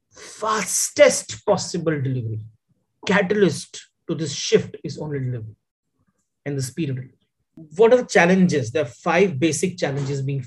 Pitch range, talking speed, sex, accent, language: 130-170 Hz, 145 wpm, male, Indian, English